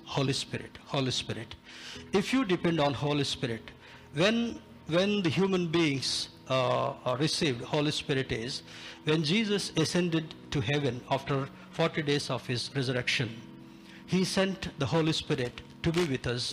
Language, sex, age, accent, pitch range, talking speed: Telugu, male, 60-79, native, 130-170 Hz, 150 wpm